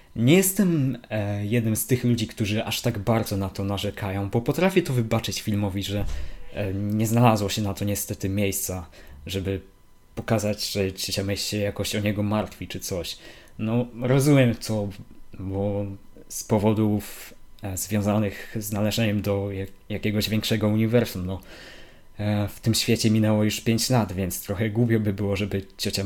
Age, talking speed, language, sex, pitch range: 20-39, 160 wpm, Polish, male, 100-115 Hz